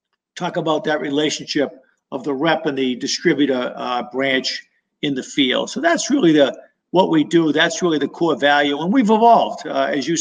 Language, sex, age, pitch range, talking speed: English, male, 50-69, 145-180 Hz, 195 wpm